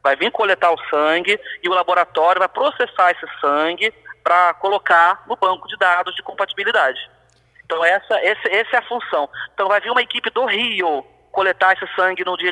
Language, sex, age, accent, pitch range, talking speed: Portuguese, male, 30-49, Brazilian, 165-215 Hz, 185 wpm